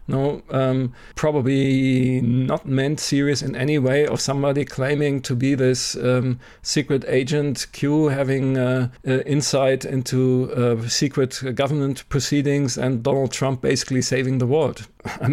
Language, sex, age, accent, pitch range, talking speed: English, male, 50-69, German, 130-150 Hz, 140 wpm